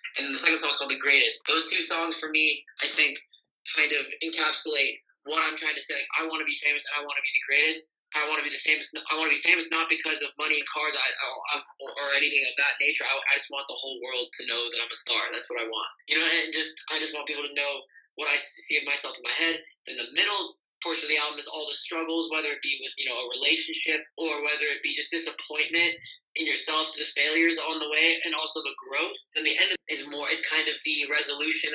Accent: American